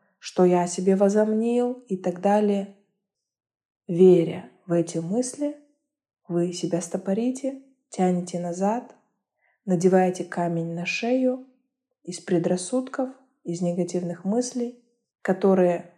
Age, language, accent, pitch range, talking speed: 20-39, Russian, native, 180-215 Hz, 100 wpm